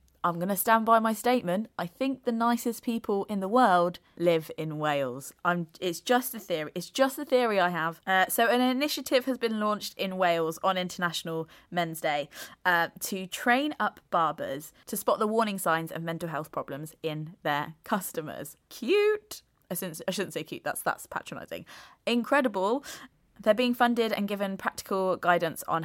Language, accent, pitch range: English, British, 165-215 Hz